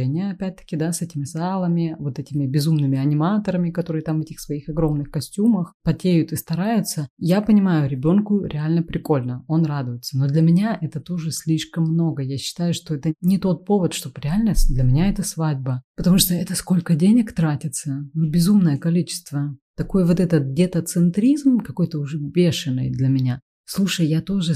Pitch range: 150-185 Hz